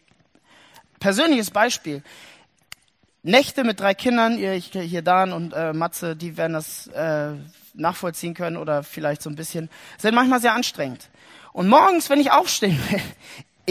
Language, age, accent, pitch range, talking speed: German, 30-49, German, 170-275 Hz, 140 wpm